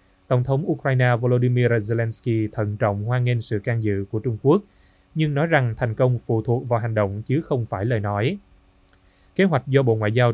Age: 20-39